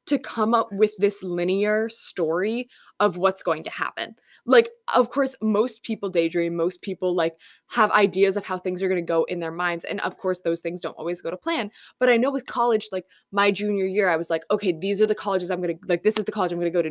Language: English